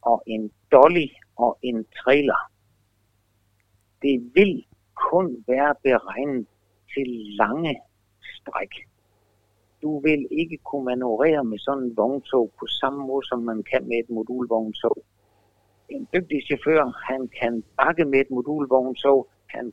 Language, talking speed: Danish, 130 wpm